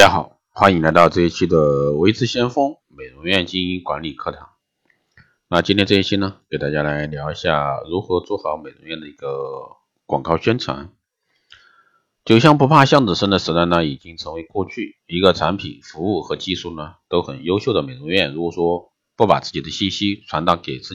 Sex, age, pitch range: male, 50-69, 85-120 Hz